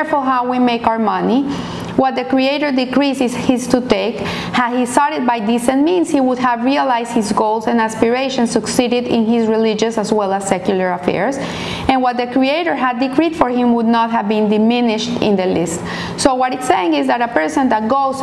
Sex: female